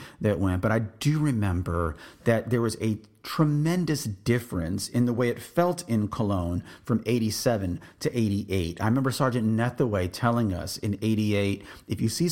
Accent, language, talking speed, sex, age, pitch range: American, English, 180 wpm, male, 40-59, 100-135 Hz